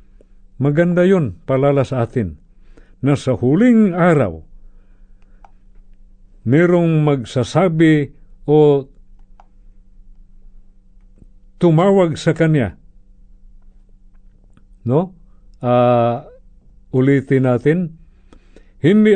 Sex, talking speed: male, 60 wpm